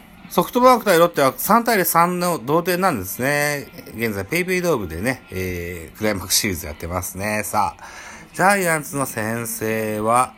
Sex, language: male, Japanese